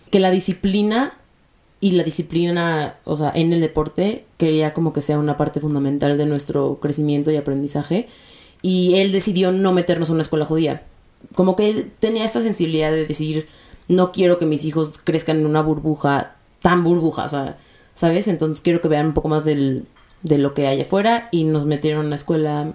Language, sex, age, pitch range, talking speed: Spanish, female, 30-49, 150-175 Hz, 195 wpm